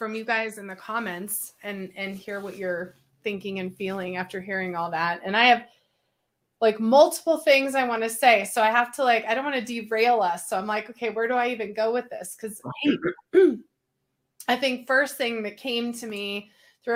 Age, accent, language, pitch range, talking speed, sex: 20-39, American, English, 200-240 Hz, 215 wpm, female